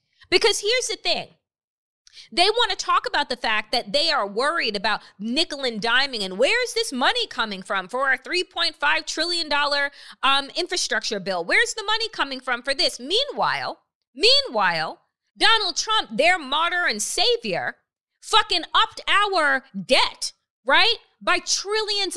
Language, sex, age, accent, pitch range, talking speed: English, female, 30-49, American, 255-360 Hz, 145 wpm